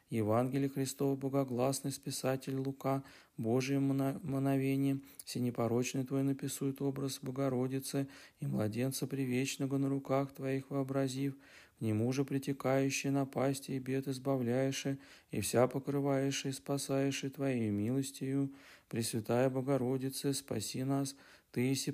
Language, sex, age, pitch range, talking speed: Russian, male, 40-59, 130-140 Hz, 105 wpm